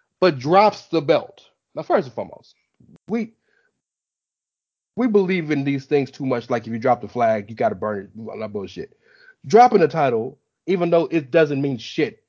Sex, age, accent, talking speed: male, 30-49, American, 185 wpm